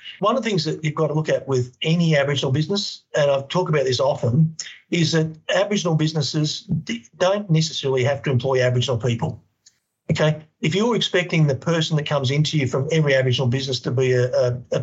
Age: 50-69